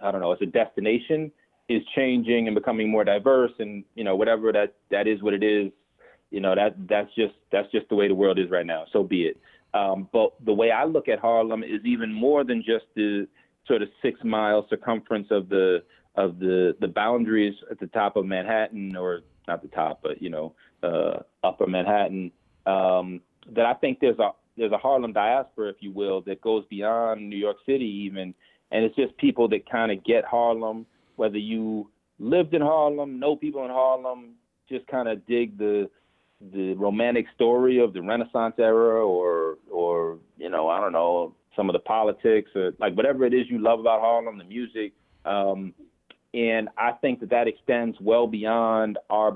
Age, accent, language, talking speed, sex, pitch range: 40-59, American, English, 195 wpm, male, 100-120 Hz